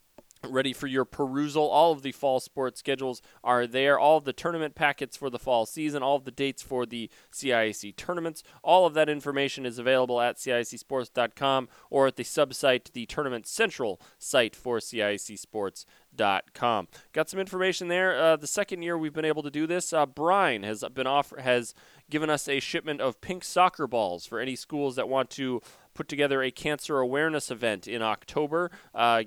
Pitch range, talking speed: 120-150 Hz, 185 wpm